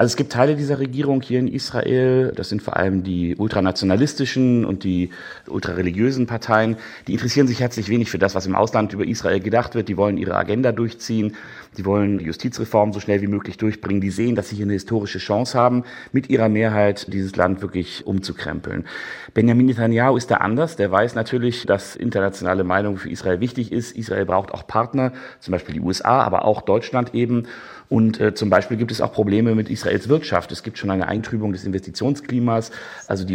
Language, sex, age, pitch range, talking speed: German, male, 40-59, 100-120 Hz, 195 wpm